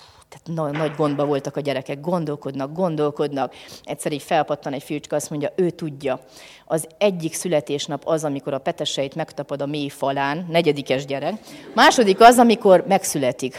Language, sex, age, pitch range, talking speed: Hungarian, female, 30-49, 140-185 Hz, 150 wpm